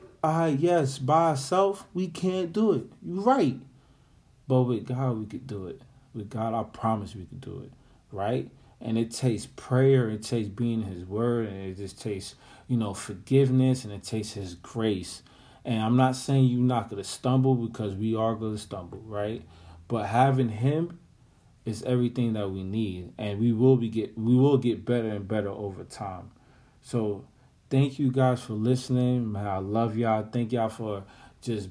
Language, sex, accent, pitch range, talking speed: English, male, American, 105-125 Hz, 180 wpm